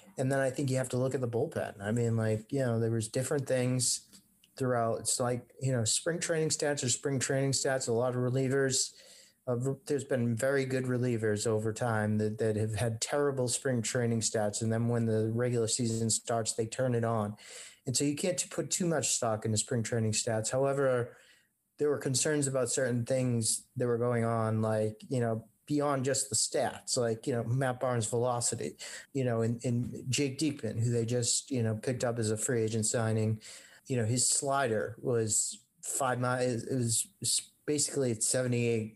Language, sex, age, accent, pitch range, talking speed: English, male, 30-49, American, 110-130 Hz, 195 wpm